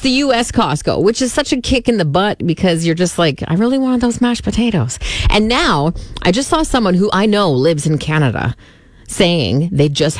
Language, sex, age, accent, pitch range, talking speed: English, female, 30-49, American, 155-245 Hz, 210 wpm